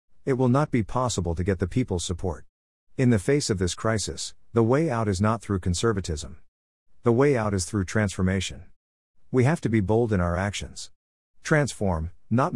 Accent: American